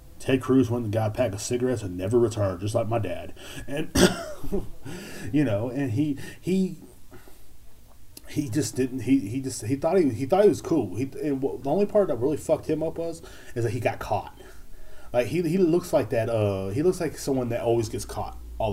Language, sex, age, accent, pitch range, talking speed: English, male, 30-49, American, 100-135 Hz, 215 wpm